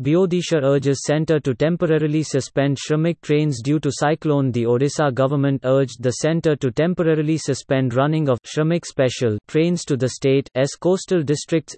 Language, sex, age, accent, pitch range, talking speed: English, male, 30-49, Indian, 130-160 Hz, 155 wpm